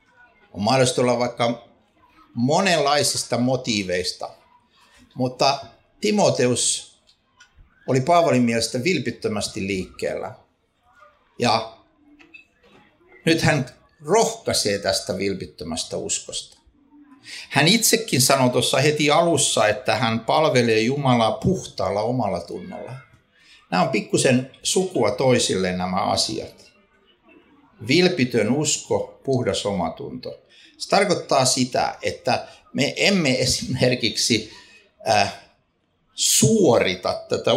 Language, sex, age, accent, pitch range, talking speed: Finnish, male, 60-79, native, 100-155 Hz, 85 wpm